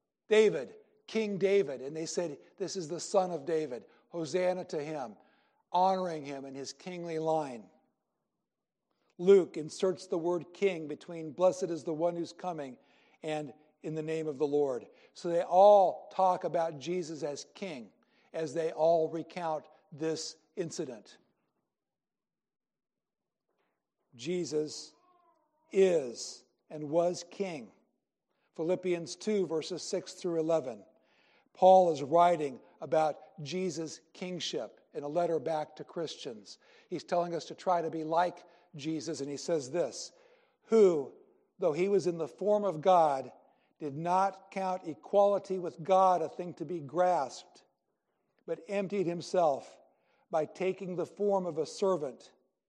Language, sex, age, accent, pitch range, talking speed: English, male, 60-79, American, 160-190 Hz, 135 wpm